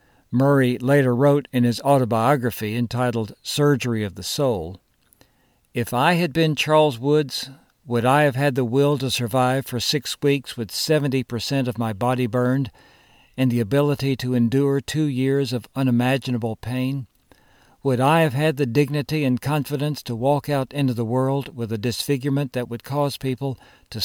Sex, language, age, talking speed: male, English, 60-79, 165 wpm